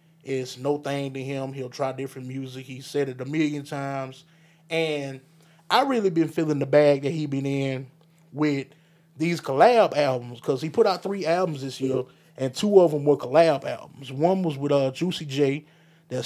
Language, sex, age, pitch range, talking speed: English, male, 20-39, 140-165 Hz, 195 wpm